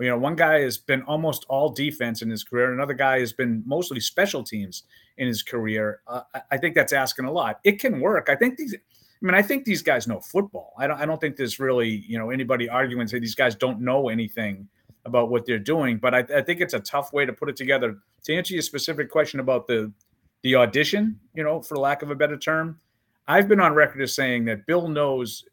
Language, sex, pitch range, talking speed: English, male, 120-155 Hz, 240 wpm